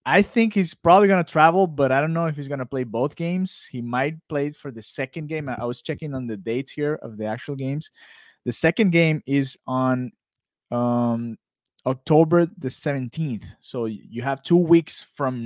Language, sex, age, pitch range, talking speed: English, male, 30-49, 110-140 Hz, 200 wpm